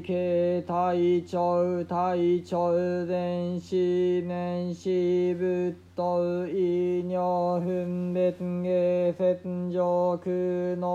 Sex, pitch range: male, 175-180 Hz